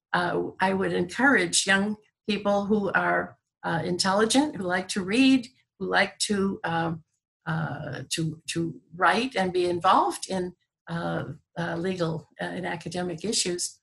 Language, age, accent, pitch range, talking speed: English, 60-79, American, 160-185 Hz, 145 wpm